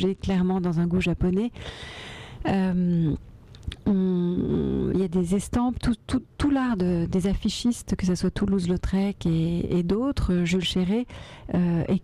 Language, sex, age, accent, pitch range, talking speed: French, female, 40-59, French, 175-200 Hz, 140 wpm